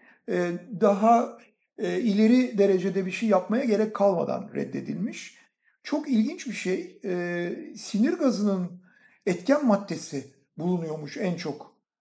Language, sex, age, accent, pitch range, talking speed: Turkish, male, 60-79, native, 180-230 Hz, 100 wpm